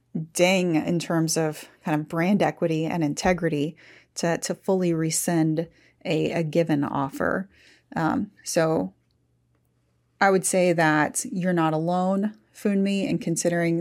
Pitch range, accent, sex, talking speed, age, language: 160-185 Hz, American, female, 135 wpm, 30-49, English